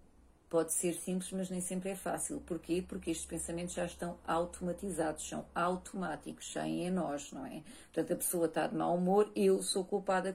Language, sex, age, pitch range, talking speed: Portuguese, female, 40-59, 165-200 Hz, 185 wpm